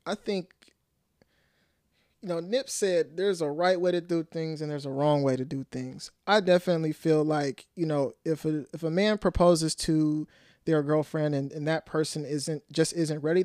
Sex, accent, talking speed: male, American, 195 wpm